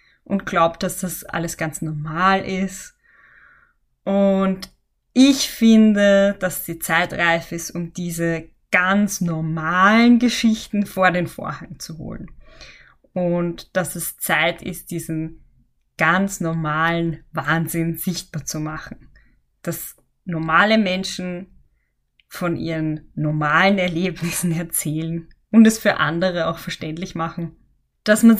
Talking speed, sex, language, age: 115 wpm, female, German, 20-39